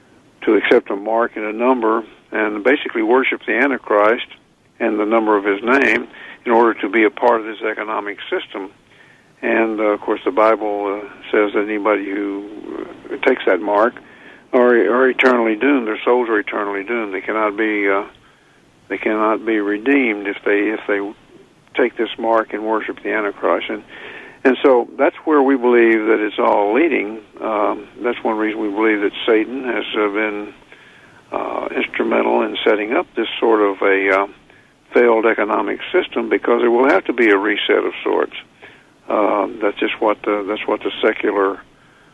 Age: 60-79